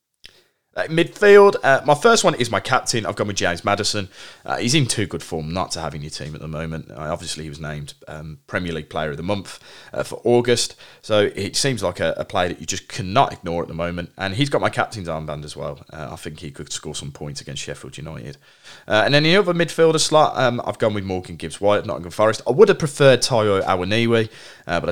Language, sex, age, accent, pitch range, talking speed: English, male, 30-49, British, 80-120 Hz, 245 wpm